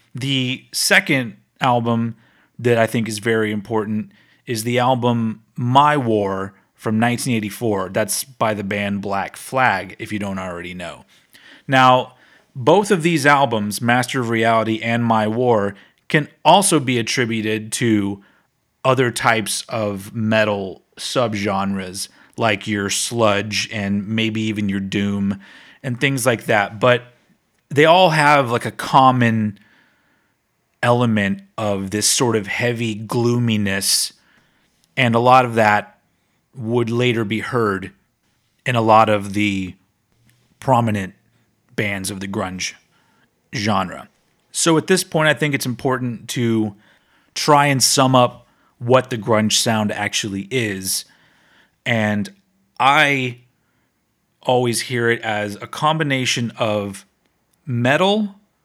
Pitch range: 105-125 Hz